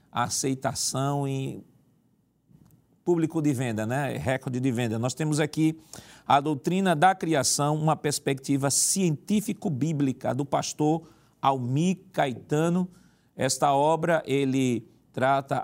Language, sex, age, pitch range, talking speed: Portuguese, male, 40-59, 125-150 Hz, 105 wpm